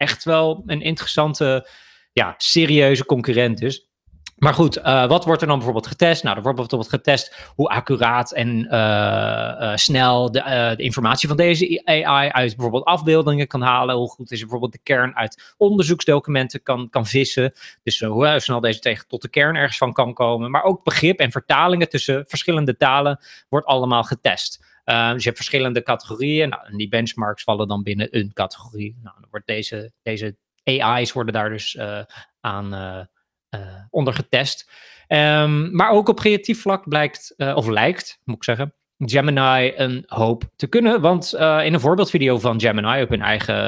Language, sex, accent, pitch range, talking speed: Dutch, male, Dutch, 115-150 Hz, 180 wpm